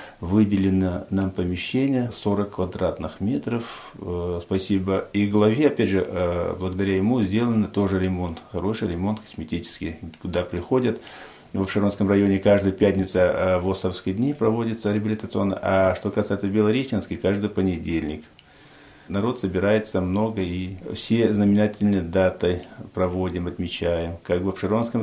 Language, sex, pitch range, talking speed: Russian, male, 90-105 Hz, 115 wpm